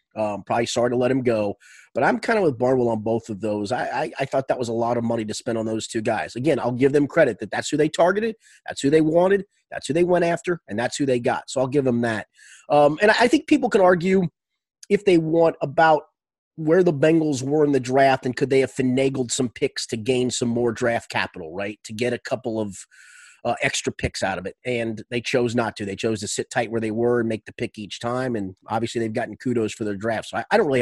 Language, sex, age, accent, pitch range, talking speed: English, male, 30-49, American, 120-145 Hz, 270 wpm